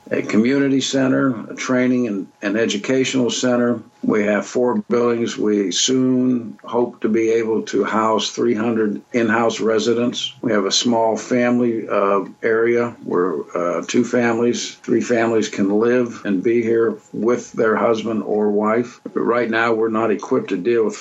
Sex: male